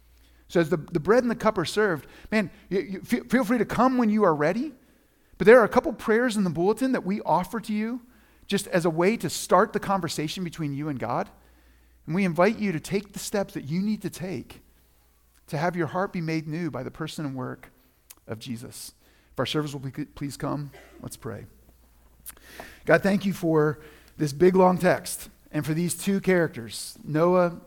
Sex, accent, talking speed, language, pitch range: male, American, 205 wpm, English, 135-190 Hz